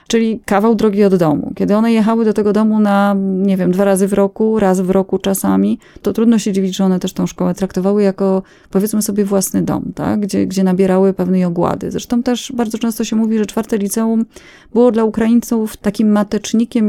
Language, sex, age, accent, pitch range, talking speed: Polish, female, 20-39, native, 190-235 Hz, 205 wpm